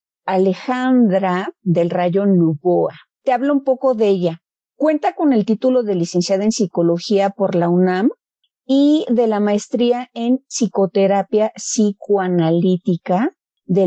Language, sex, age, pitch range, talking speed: Spanish, female, 40-59, 185-240 Hz, 125 wpm